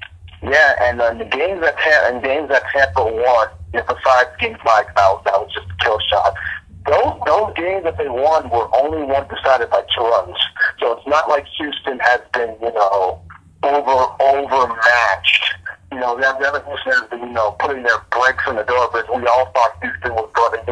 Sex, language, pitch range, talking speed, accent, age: male, English, 100-135 Hz, 195 wpm, American, 40-59